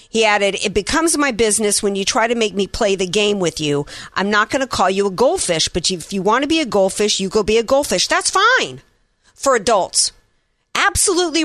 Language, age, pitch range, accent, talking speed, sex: English, 50-69, 195-275 Hz, American, 225 wpm, female